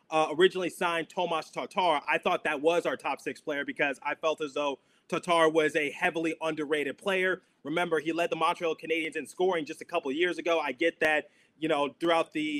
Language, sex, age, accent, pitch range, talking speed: English, male, 30-49, American, 155-175 Hz, 210 wpm